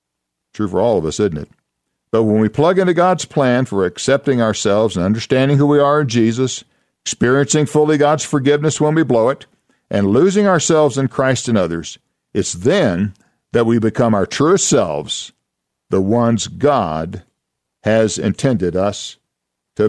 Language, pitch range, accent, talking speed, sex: English, 95-130 Hz, American, 165 wpm, male